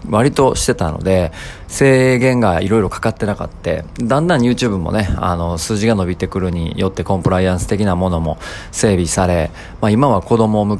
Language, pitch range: Japanese, 85-115 Hz